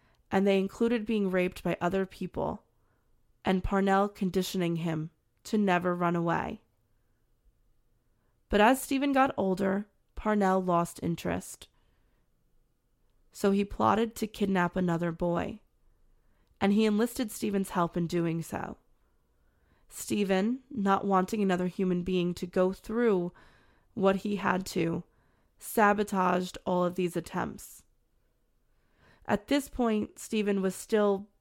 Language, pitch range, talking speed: English, 175-205 Hz, 120 wpm